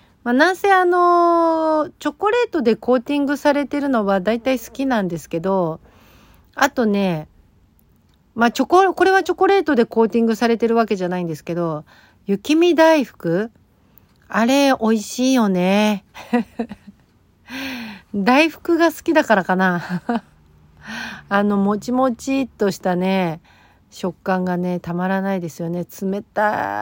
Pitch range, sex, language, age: 175-260 Hz, female, Japanese, 50-69